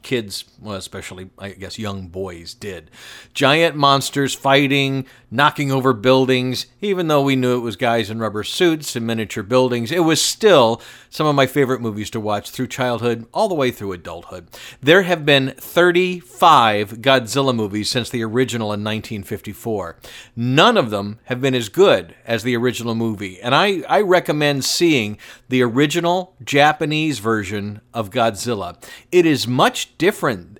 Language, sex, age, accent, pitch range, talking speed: English, male, 50-69, American, 110-150 Hz, 155 wpm